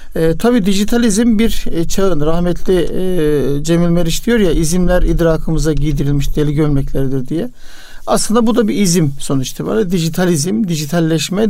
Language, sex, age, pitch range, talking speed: Turkish, male, 60-79, 150-195 Hz, 135 wpm